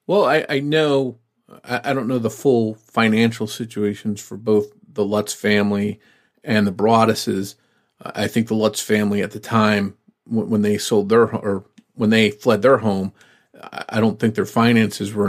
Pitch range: 105-115 Hz